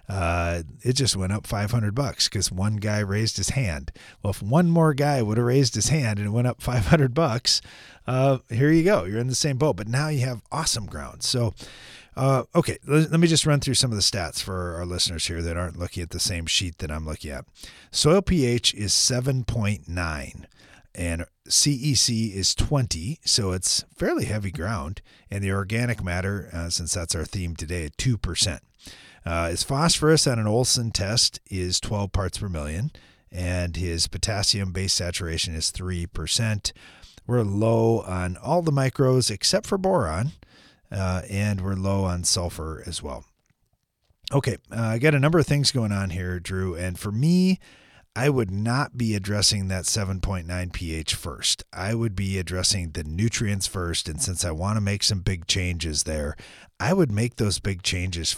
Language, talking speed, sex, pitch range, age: English, 185 wpm, male, 90-125 Hz, 40-59